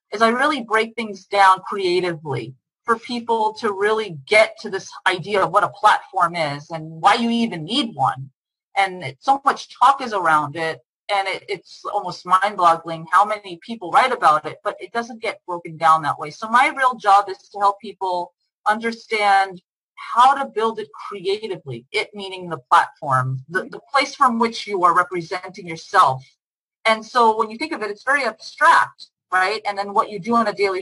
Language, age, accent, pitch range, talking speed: English, 30-49, American, 165-215 Hz, 190 wpm